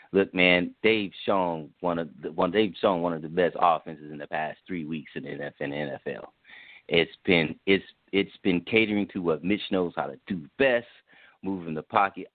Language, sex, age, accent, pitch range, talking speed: English, male, 30-49, American, 100-125 Hz, 195 wpm